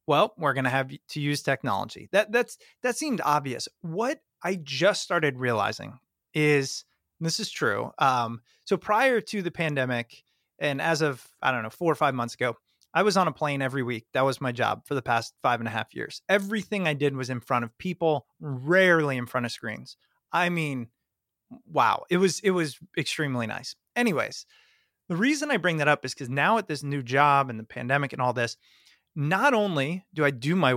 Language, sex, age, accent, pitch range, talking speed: English, male, 30-49, American, 130-180 Hz, 205 wpm